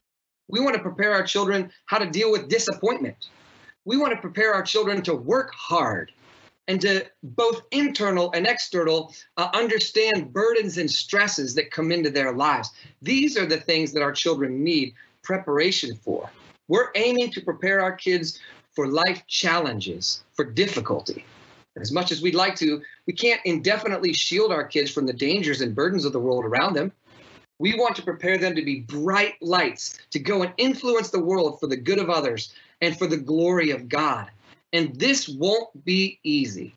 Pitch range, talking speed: 155-215 Hz, 180 wpm